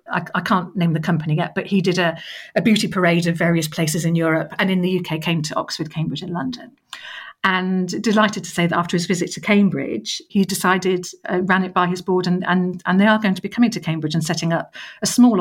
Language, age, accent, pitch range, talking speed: English, 50-69, British, 165-205 Hz, 245 wpm